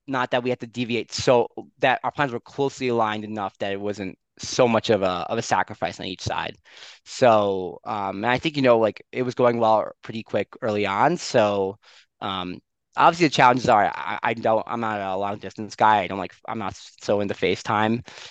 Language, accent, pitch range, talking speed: English, American, 100-125 Hz, 215 wpm